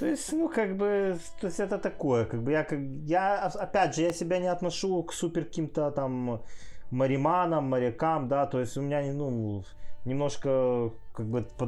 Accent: native